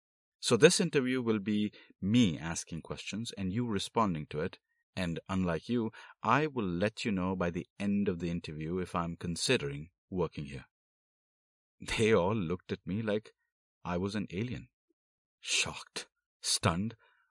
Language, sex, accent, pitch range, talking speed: Hindi, male, native, 80-125 Hz, 155 wpm